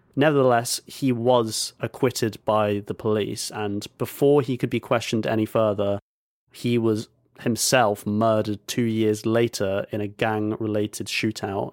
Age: 30-49